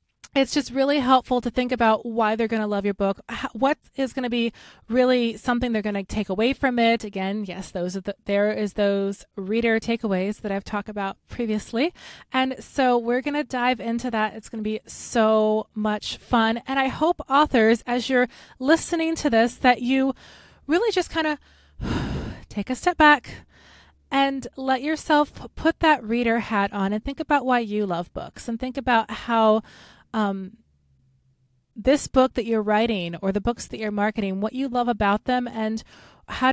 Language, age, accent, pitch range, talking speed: English, 20-39, American, 215-270 Hz, 190 wpm